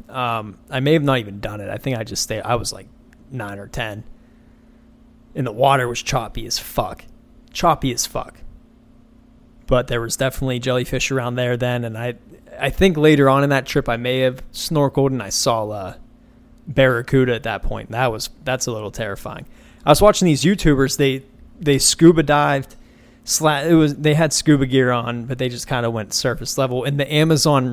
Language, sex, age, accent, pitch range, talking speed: English, male, 20-39, American, 120-150 Hz, 200 wpm